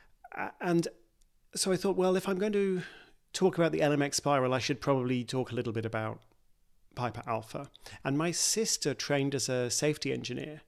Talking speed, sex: 180 wpm, male